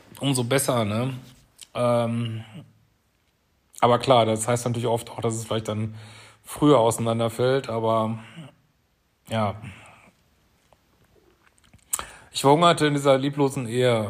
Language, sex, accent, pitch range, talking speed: German, male, German, 110-140 Hz, 105 wpm